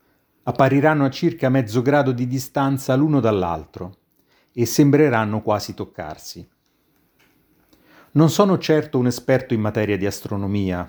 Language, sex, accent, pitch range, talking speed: Italian, male, native, 100-130 Hz, 120 wpm